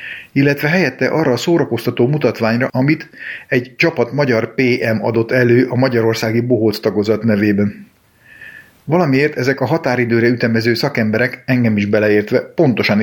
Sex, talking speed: male, 130 wpm